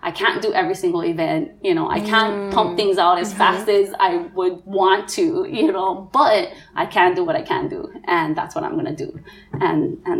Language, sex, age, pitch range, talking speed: English, female, 20-39, 225-350 Hz, 225 wpm